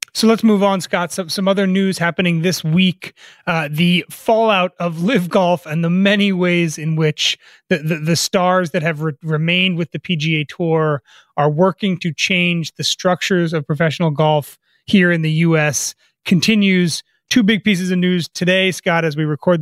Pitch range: 155-185 Hz